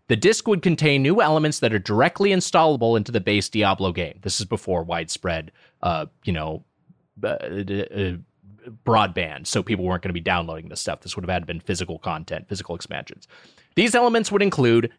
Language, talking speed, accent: English, 180 wpm, American